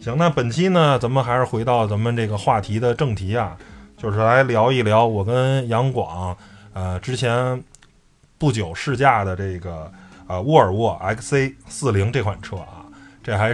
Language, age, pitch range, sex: Chinese, 20-39, 100-130 Hz, male